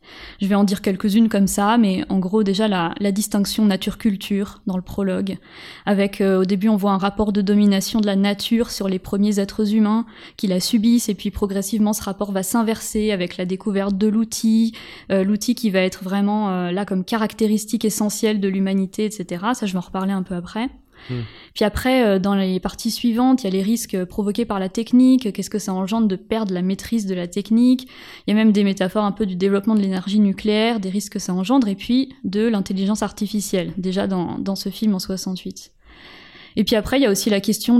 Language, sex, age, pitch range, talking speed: French, female, 20-39, 195-220 Hz, 220 wpm